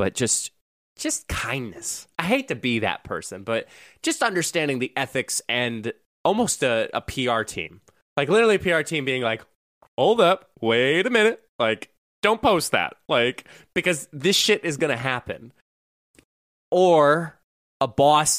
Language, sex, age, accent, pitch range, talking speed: English, male, 20-39, American, 95-130 Hz, 155 wpm